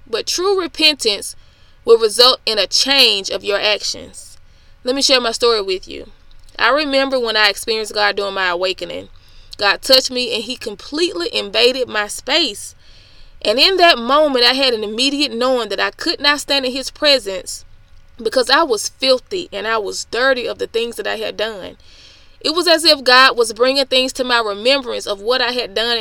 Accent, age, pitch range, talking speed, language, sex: American, 20-39, 220-290 Hz, 195 wpm, English, female